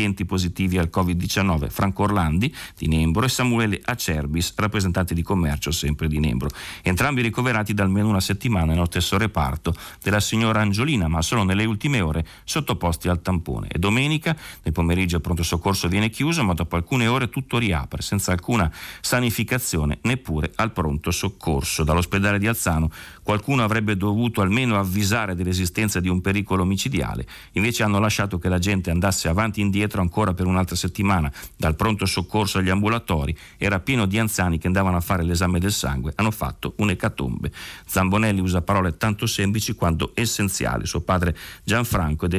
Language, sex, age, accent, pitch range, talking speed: Italian, male, 40-59, native, 85-105 Hz, 160 wpm